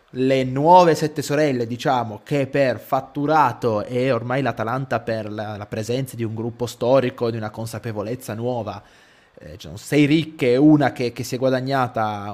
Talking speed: 155 wpm